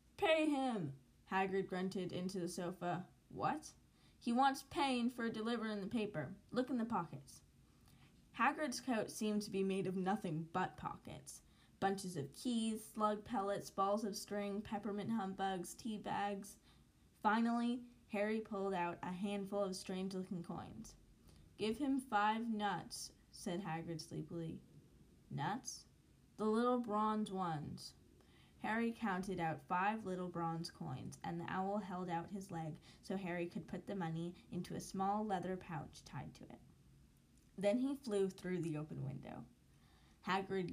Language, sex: English, female